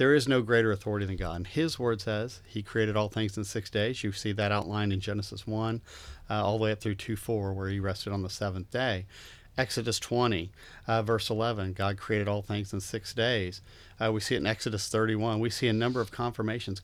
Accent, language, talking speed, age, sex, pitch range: American, English, 230 wpm, 40-59, male, 100-125 Hz